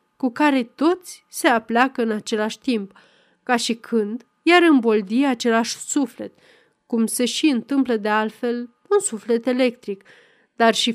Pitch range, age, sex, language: 225-295 Hz, 30-49, female, Romanian